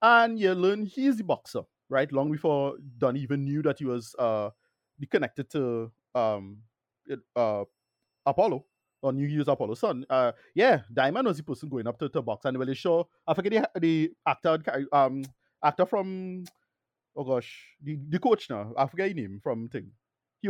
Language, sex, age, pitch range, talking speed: English, male, 30-49, 125-170 Hz, 180 wpm